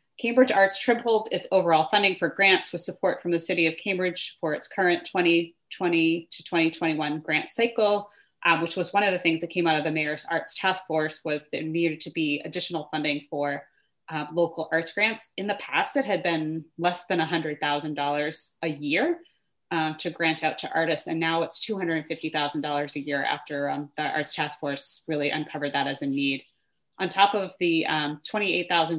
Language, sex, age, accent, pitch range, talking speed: English, female, 30-49, American, 155-195 Hz, 190 wpm